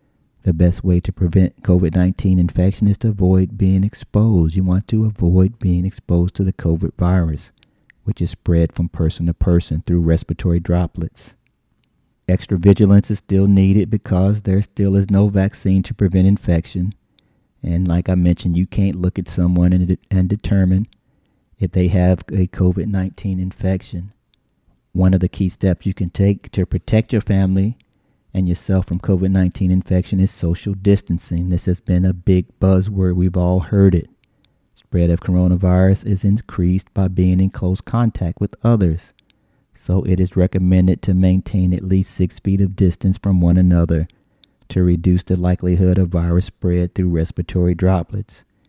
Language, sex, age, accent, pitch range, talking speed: English, male, 40-59, American, 90-100 Hz, 160 wpm